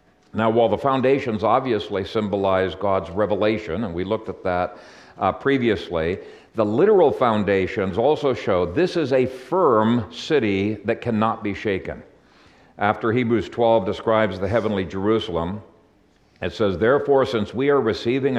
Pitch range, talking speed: 105-135 Hz, 140 wpm